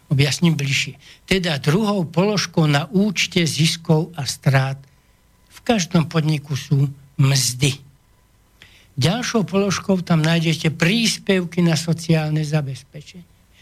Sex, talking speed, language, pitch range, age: male, 100 wpm, Slovak, 130-175 Hz, 60-79